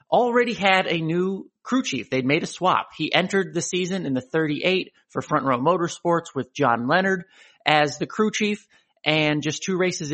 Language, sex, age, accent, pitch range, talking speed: English, male, 30-49, American, 145-185 Hz, 190 wpm